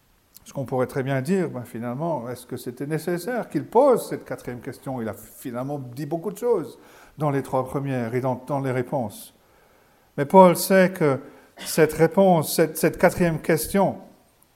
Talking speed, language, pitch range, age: 175 wpm, French, 145-190 Hz, 50-69